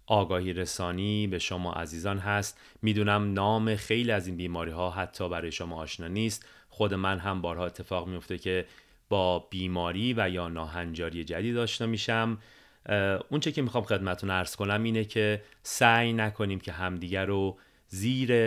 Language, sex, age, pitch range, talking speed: Persian, male, 30-49, 90-115 Hz, 155 wpm